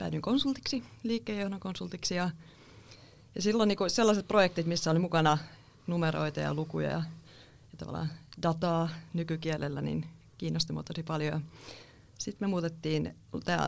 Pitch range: 150-185 Hz